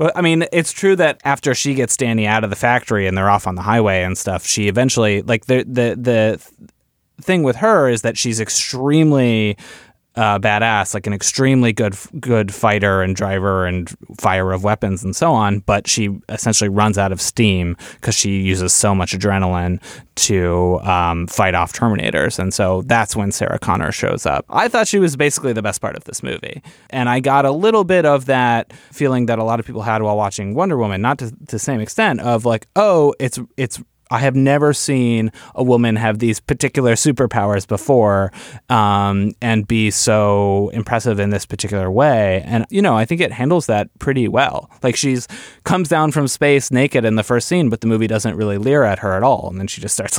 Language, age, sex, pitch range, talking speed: English, 20-39, male, 100-130 Hz, 210 wpm